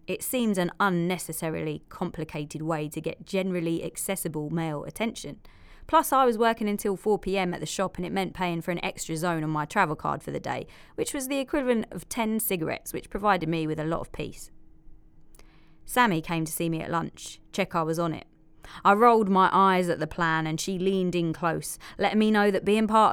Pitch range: 165-195 Hz